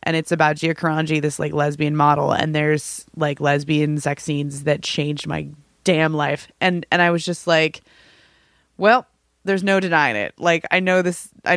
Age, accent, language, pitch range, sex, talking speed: 20-39, American, English, 150-180 Hz, female, 185 wpm